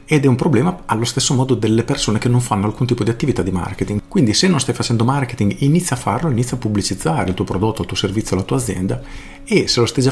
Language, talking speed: Italian, 260 wpm